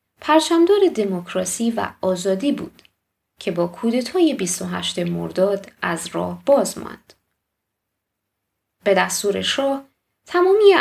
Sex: female